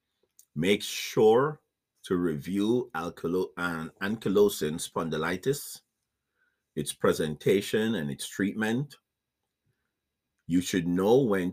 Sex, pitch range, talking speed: male, 80-110 Hz, 90 wpm